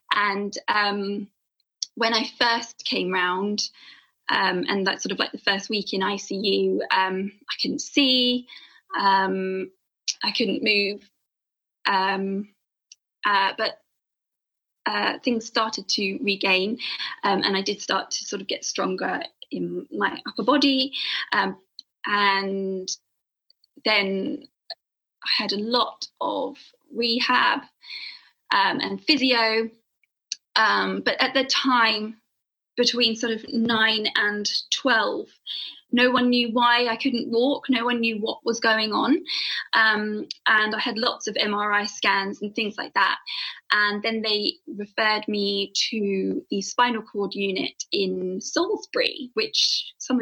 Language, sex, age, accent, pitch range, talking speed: English, female, 20-39, British, 205-260 Hz, 135 wpm